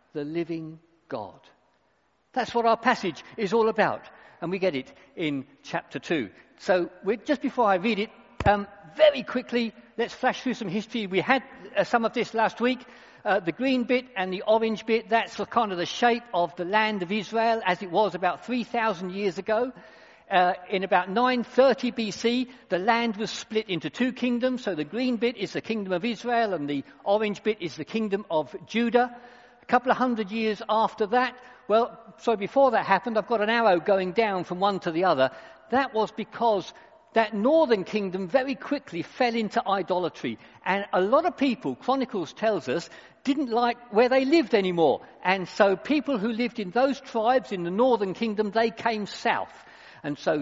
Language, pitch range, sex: English, 185-245 Hz, male